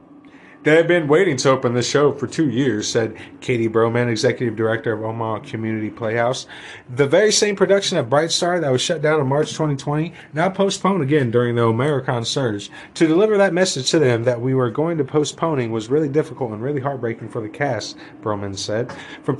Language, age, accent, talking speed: English, 30-49, American, 200 wpm